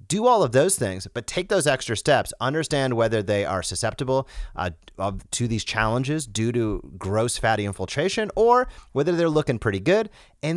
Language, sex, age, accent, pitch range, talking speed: English, male, 30-49, American, 105-145 Hz, 175 wpm